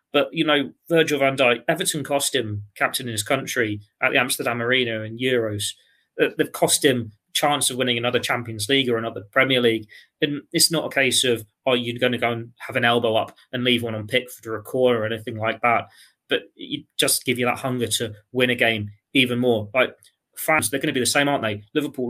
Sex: male